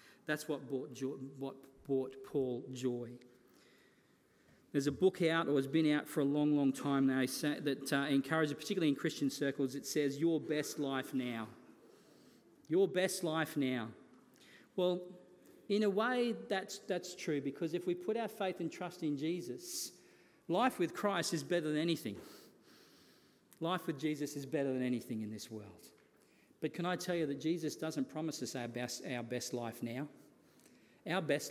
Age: 40-59